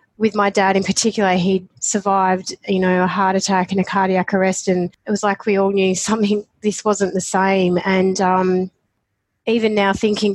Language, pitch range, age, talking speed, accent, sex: English, 185-200 Hz, 30-49, 190 wpm, Australian, female